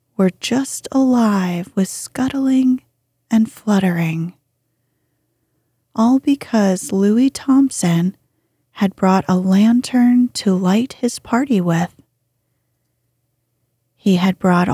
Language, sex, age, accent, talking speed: English, female, 30-49, American, 95 wpm